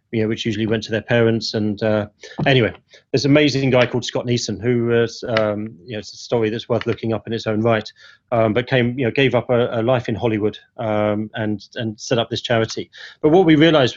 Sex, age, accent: male, 30-49, British